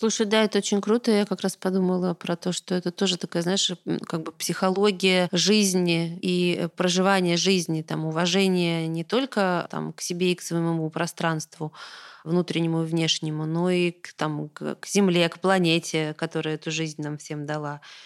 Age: 20-39